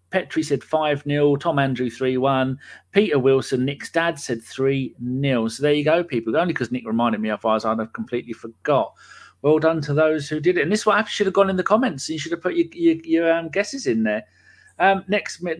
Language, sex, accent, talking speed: English, male, British, 220 wpm